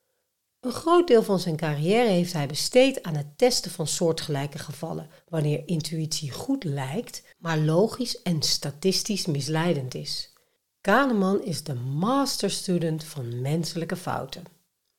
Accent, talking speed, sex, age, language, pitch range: Dutch, 130 wpm, female, 60-79, Dutch, 155-215 Hz